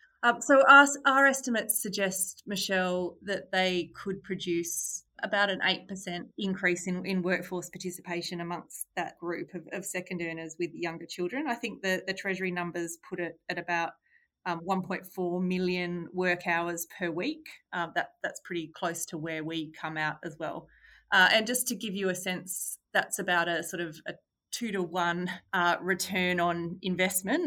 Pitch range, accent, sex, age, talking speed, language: 175-205 Hz, Australian, female, 30-49, 170 wpm, English